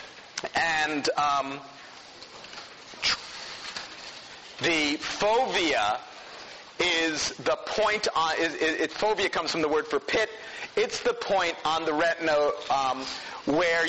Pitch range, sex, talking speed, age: 145-185 Hz, male, 100 wpm, 40-59